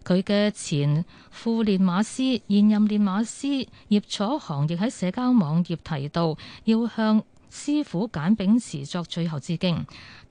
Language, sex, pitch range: Chinese, female, 165-230 Hz